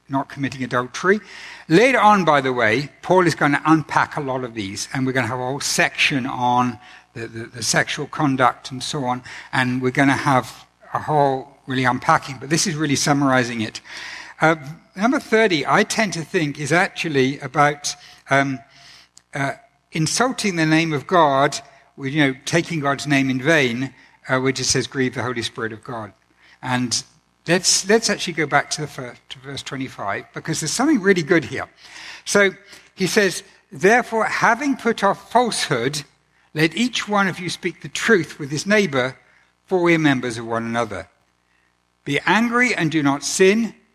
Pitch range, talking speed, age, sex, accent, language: 130-175 Hz, 185 wpm, 60-79, male, British, English